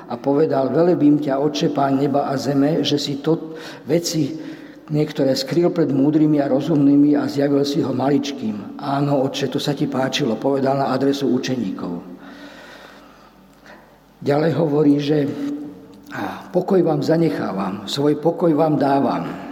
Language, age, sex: Slovak, 50-69, male